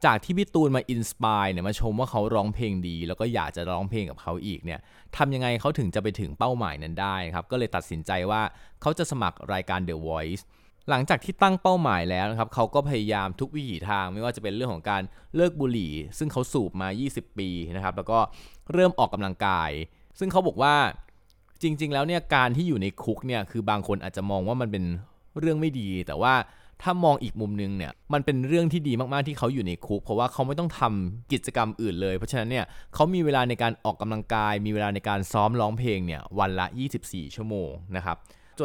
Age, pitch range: 20-39, 95-125 Hz